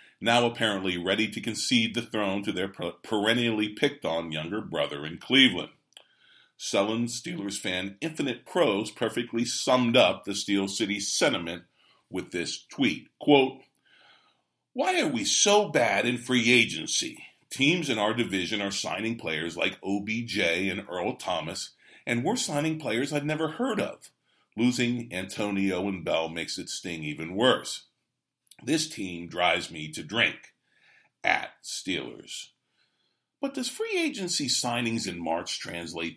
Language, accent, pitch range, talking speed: English, American, 90-120 Hz, 140 wpm